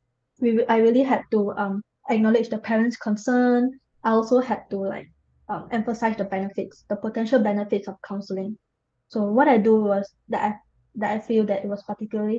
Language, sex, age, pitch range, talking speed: English, female, 20-39, 200-230 Hz, 185 wpm